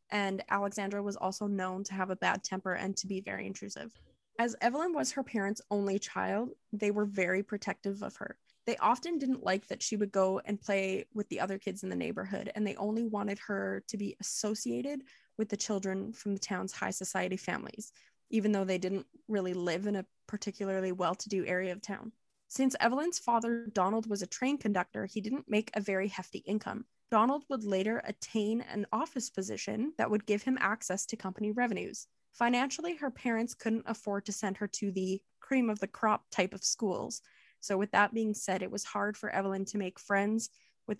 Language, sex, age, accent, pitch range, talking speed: English, female, 20-39, American, 195-225 Hz, 200 wpm